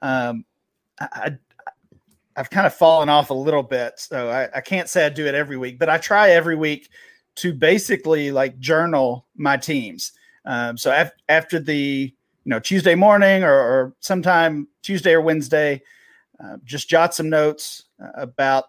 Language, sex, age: English, male, 40-59